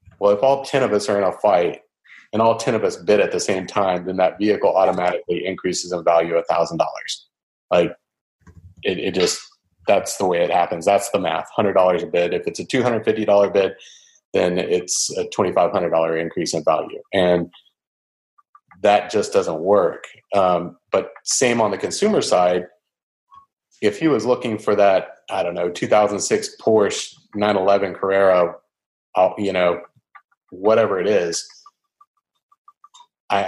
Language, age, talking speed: English, 30-49, 155 wpm